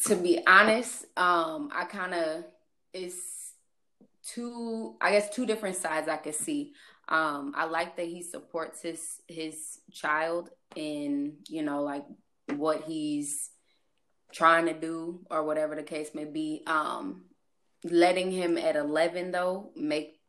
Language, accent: English, American